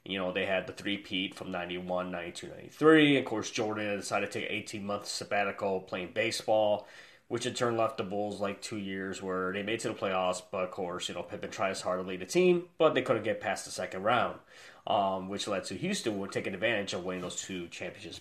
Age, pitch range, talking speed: 20-39, 100-125 Hz, 235 wpm